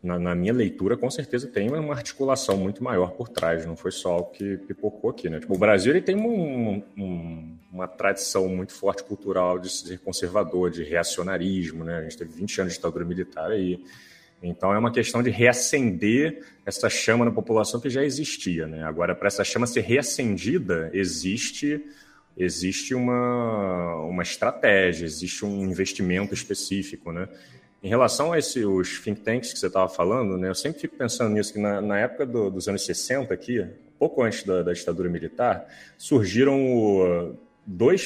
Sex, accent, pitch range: male, Brazilian, 90-120 Hz